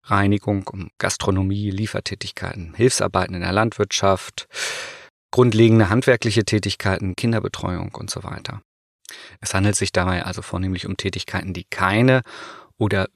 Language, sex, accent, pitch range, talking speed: German, male, German, 95-110 Hz, 120 wpm